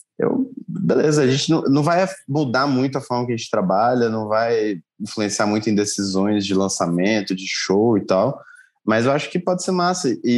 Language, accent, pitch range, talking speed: Portuguese, Brazilian, 105-140 Hz, 200 wpm